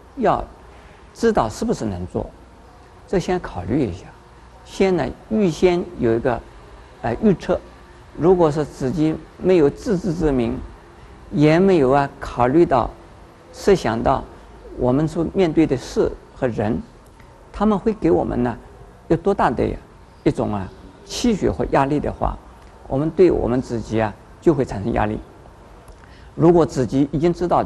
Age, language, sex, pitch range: 50-69, Chinese, male, 125-185 Hz